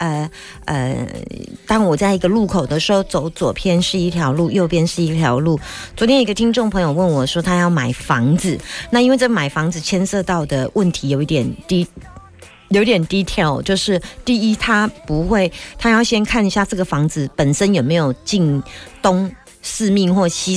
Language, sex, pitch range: Chinese, female, 155-215 Hz